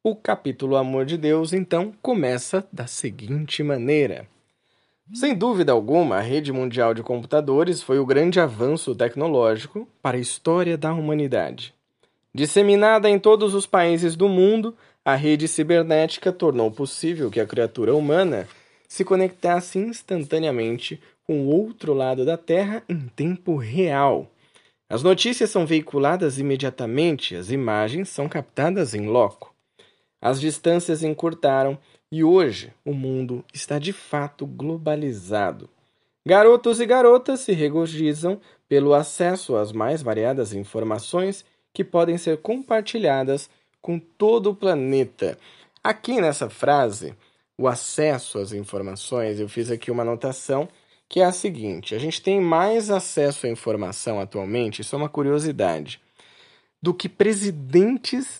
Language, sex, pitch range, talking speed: Portuguese, male, 130-185 Hz, 130 wpm